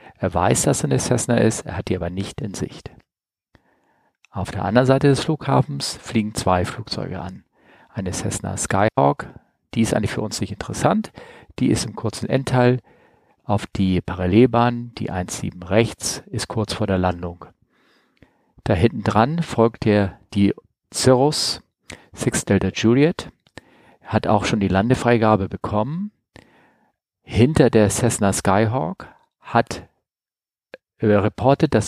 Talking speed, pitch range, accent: 135 wpm, 95-120 Hz, German